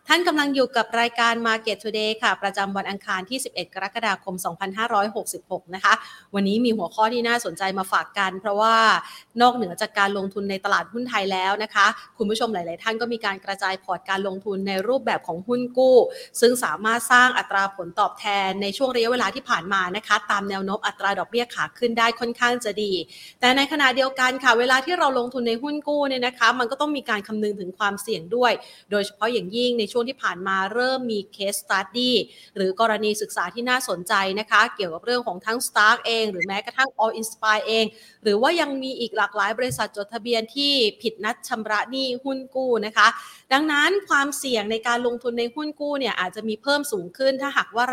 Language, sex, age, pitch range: Thai, female, 30-49, 200-245 Hz